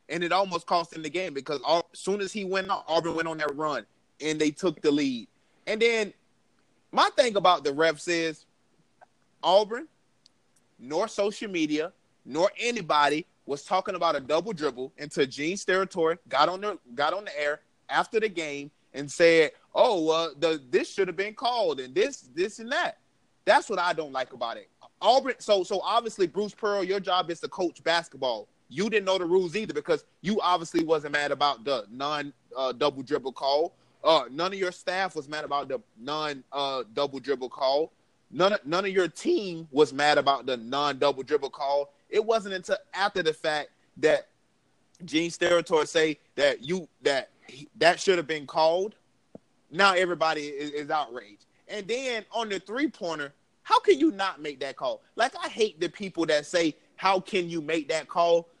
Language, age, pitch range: English, 30-49, 155-205 Hz